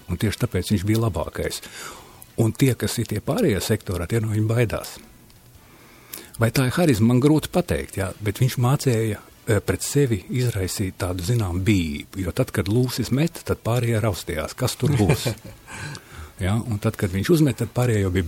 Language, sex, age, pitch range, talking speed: English, male, 50-69, 100-130 Hz, 180 wpm